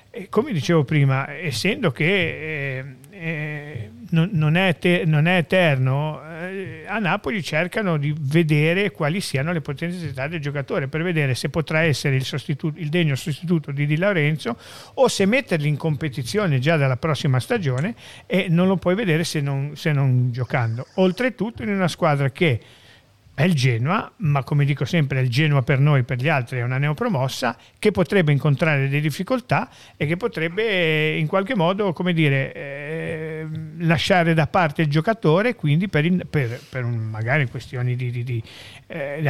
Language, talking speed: Italian, 170 wpm